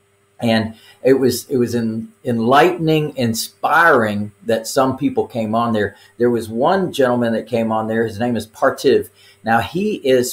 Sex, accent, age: male, American, 50-69